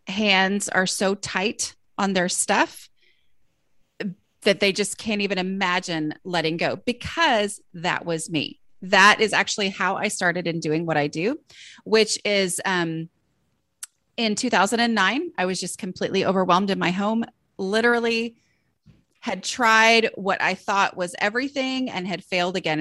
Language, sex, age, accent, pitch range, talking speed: English, female, 30-49, American, 175-225 Hz, 145 wpm